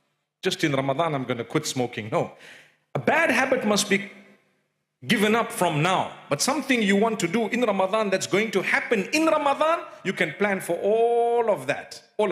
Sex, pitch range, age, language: male, 180-245 Hz, 50-69, English